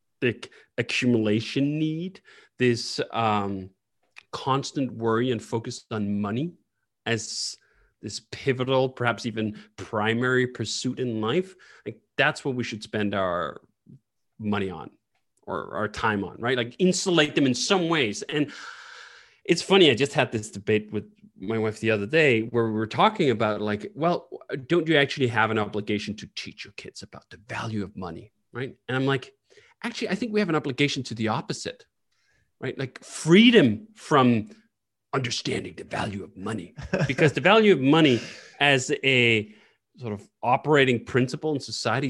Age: 30-49